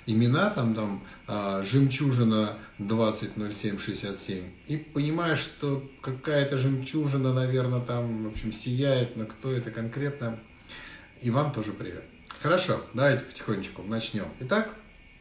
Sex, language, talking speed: male, Russian, 110 wpm